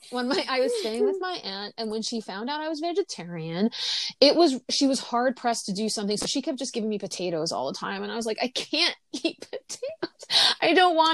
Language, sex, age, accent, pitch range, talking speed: English, female, 30-49, American, 200-285 Hz, 250 wpm